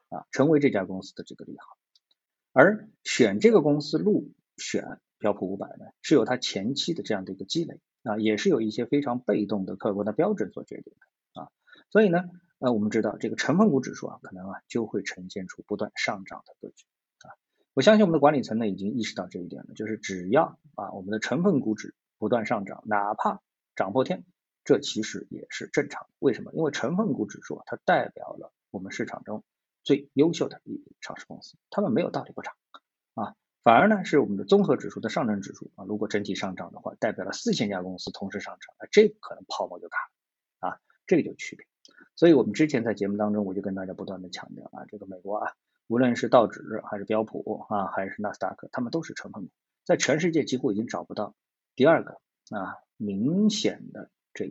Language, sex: Chinese, male